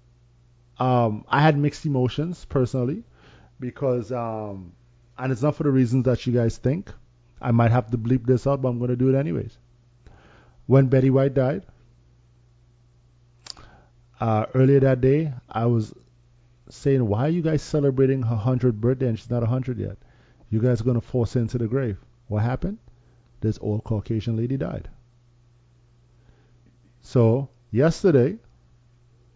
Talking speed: 150 wpm